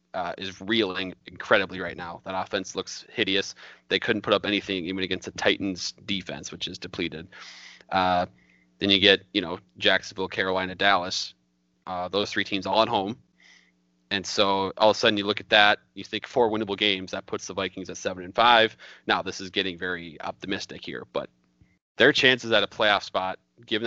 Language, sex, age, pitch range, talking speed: English, male, 30-49, 90-105 Hz, 195 wpm